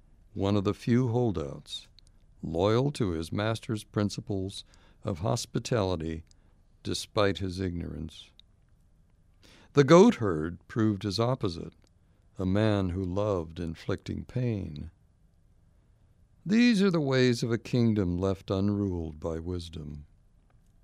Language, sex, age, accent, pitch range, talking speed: English, male, 60-79, American, 90-115 Hz, 105 wpm